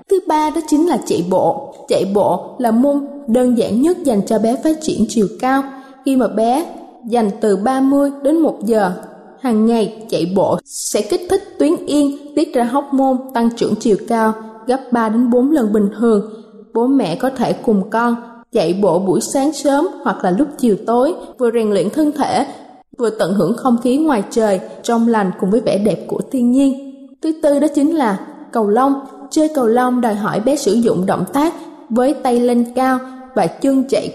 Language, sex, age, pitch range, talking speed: Vietnamese, female, 20-39, 225-280 Hz, 200 wpm